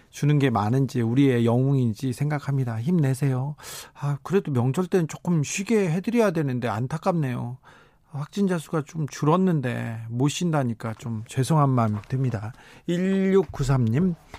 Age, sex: 40-59, male